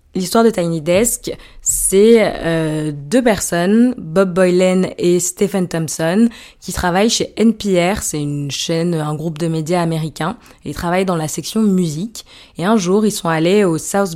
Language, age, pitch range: French, 20-39, 160-190 Hz